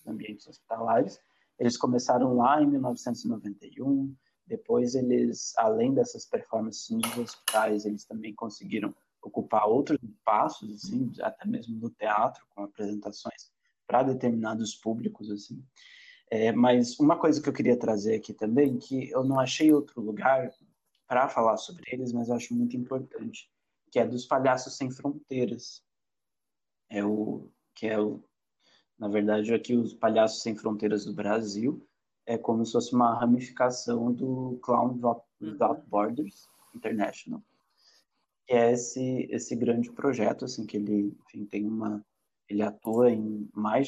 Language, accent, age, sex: Portuguese, Brazilian, 20-39, male